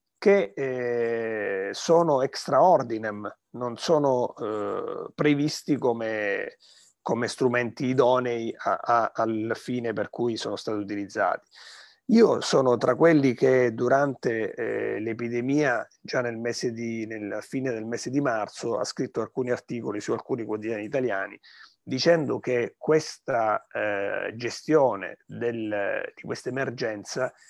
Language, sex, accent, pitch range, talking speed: Italian, male, native, 110-130 Hz, 110 wpm